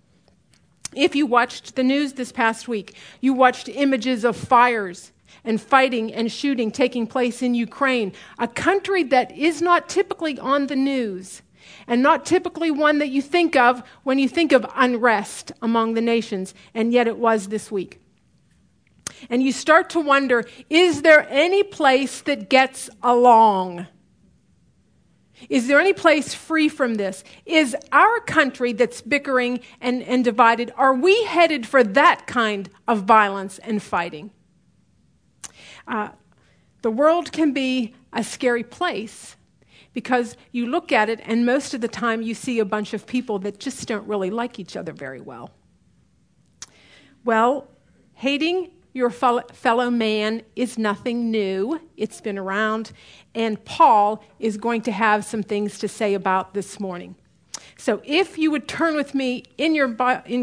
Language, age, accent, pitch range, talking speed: English, 50-69, American, 220-280 Hz, 155 wpm